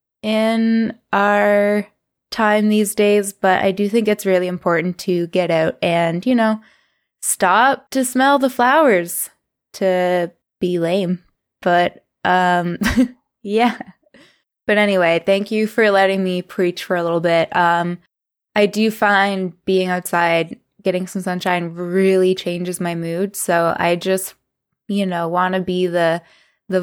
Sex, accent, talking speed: female, American, 145 wpm